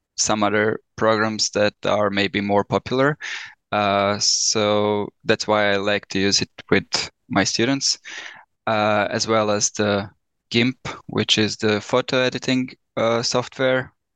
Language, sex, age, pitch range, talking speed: English, male, 10-29, 100-115 Hz, 140 wpm